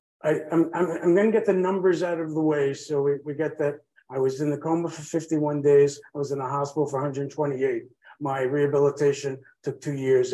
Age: 50-69